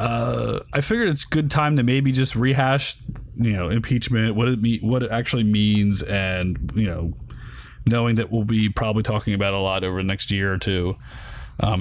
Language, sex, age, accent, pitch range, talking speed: English, male, 30-49, American, 100-130 Hz, 200 wpm